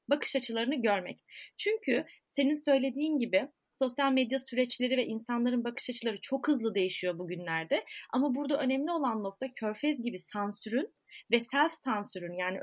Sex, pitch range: female, 220-275 Hz